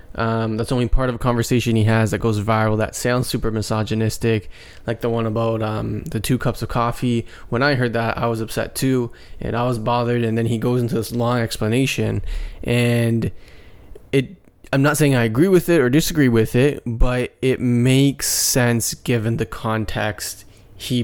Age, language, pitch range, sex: 20-39, English, 110-125 Hz, male